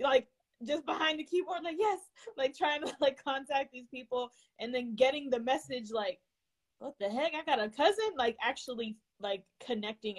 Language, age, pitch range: English, 20-39, 195-255 Hz